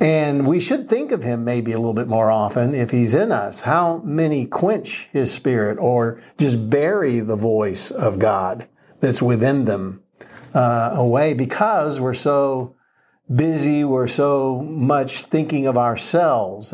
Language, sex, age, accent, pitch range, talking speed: English, male, 60-79, American, 120-150 Hz, 155 wpm